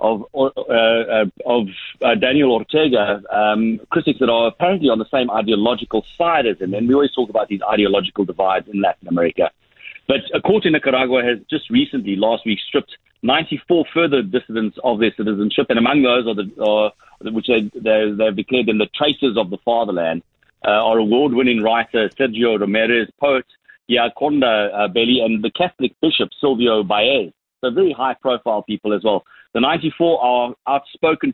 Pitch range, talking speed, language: 110-140 Hz, 170 wpm, English